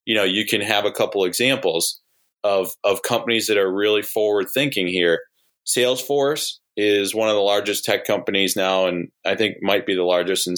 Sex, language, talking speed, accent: male, English, 195 wpm, American